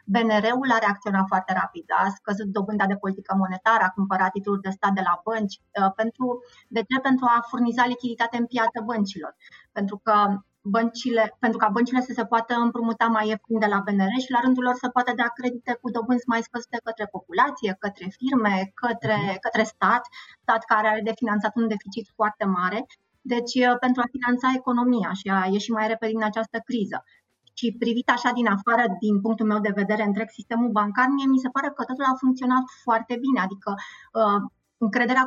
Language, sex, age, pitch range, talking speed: Romanian, female, 30-49, 200-245 Hz, 180 wpm